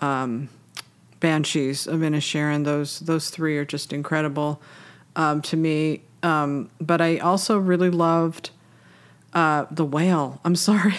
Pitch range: 150-190 Hz